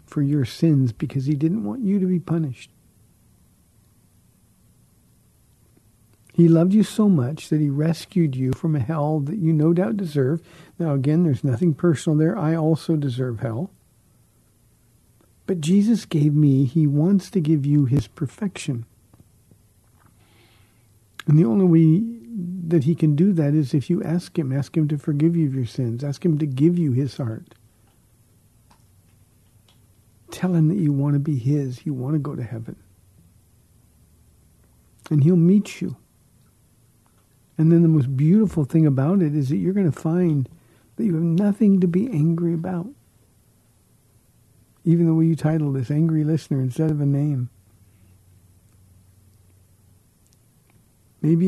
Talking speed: 155 wpm